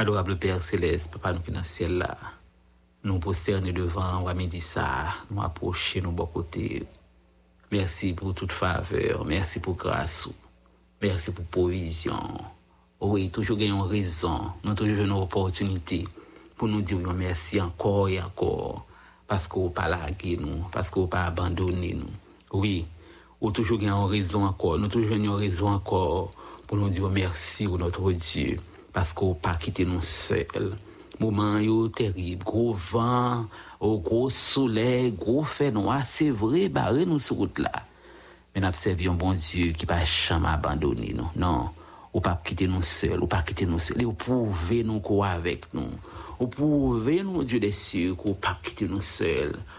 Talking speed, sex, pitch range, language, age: 160 wpm, male, 85-105 Hz, English, 60-79